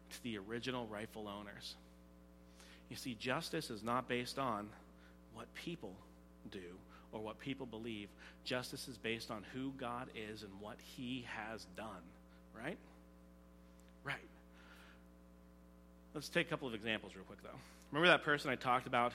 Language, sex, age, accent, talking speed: English, male, 40-59, American, 145 wpm